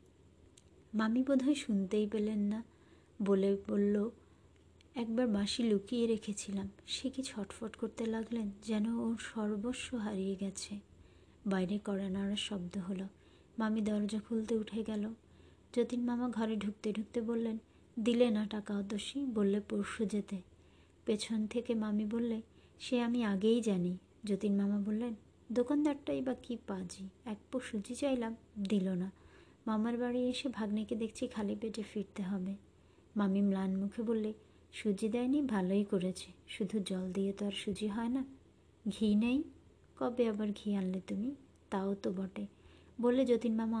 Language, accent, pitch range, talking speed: Bengali, native, 200-230 Hz, 135 wpm